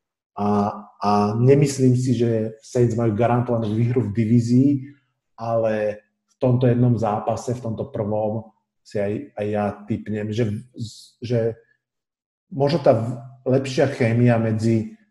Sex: male